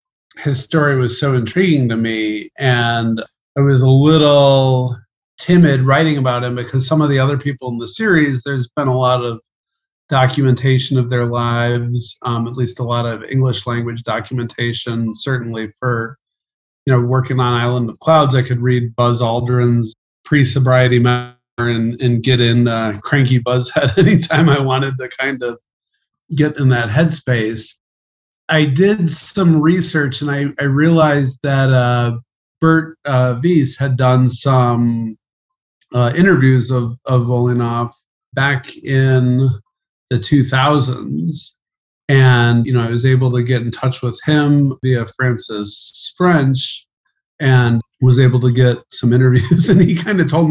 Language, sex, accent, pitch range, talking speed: English, male, American, 120-140 Hz, 150 wpm